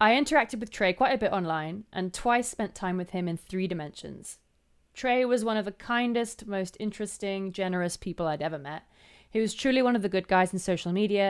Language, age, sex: English, 20-39, female